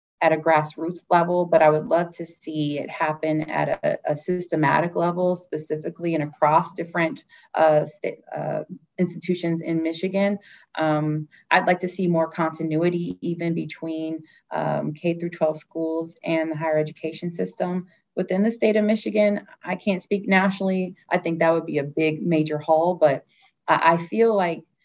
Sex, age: female, 30-49